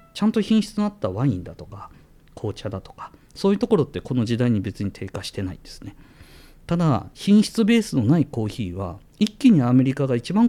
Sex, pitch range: male, 100-155 Hz